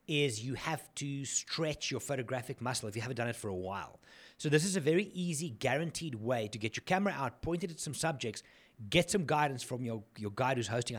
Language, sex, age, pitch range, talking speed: English, male, 30-49, 115-155 Hz, 230 wpm